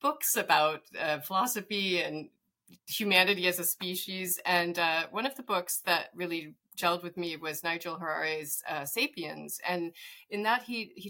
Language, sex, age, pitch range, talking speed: English, female, 30-49, 170-210 Hz, 160 wpm